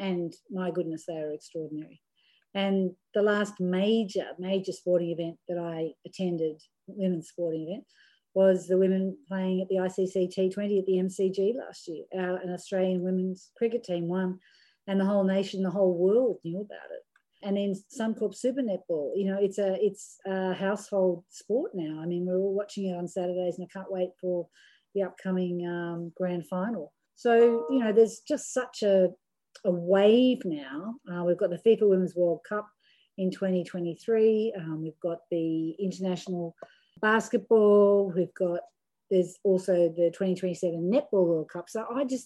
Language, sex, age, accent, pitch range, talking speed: English, female, 40-59, Australian, 175-200 Hz, 170 wpm